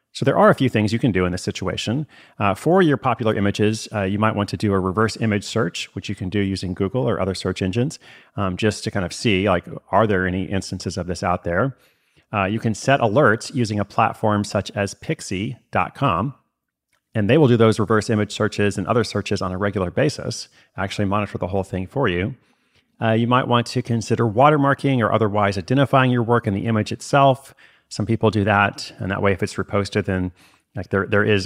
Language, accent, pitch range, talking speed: English, American, 95-115 Hz, 220 wpm